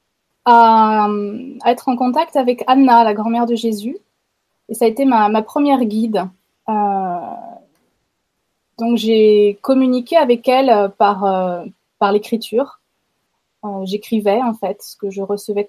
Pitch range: 205-245 Hz